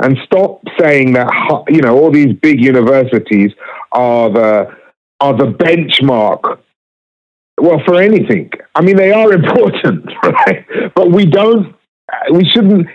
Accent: British